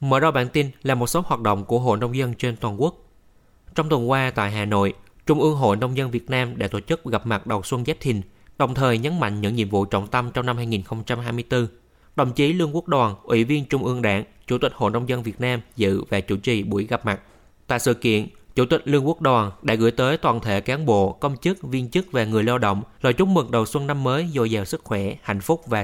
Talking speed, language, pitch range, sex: 260 wpm, Vietnamese, 105-140 Hz, male